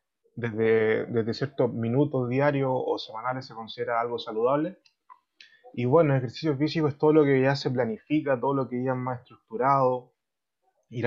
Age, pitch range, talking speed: 20-39, 120-150 Hz, 170 wpm